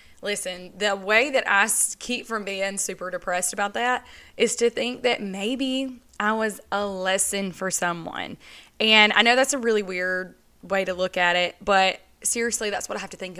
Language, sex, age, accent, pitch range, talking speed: English, female, 20-39, American, 190-230 Hz, 195 wpm